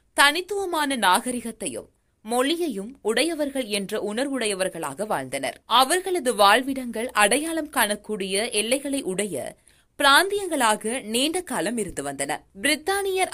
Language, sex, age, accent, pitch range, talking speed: Tamil, female, 20-39, native, 220-305 Hz, 85 wpm